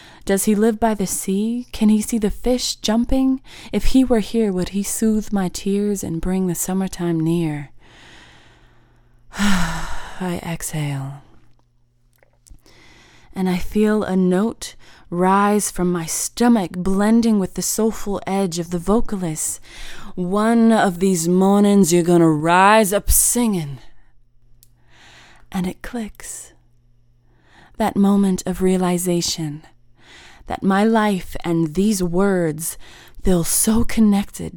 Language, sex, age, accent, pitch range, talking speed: English, female, 20-39, American, 165-210 Hz, 120 wpm